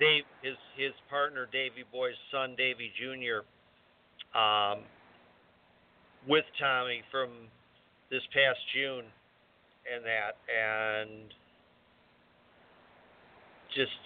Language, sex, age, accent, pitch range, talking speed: English, male, 50-69, American, 115-150 Hz, 85 wpm